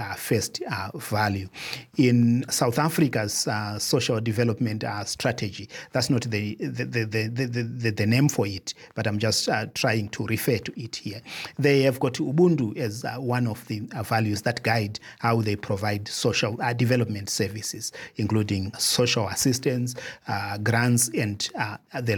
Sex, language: male, English